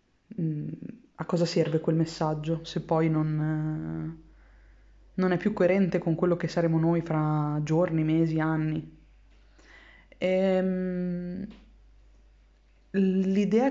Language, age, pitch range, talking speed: Italian, 20-39, 160-190 Hz, 95 wpm